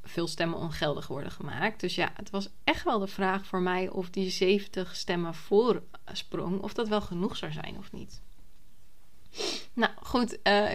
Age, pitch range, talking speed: 20-39, 170-200 Hz, 175 wpm